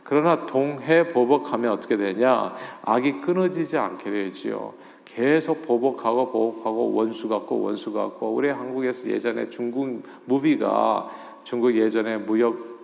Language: Korean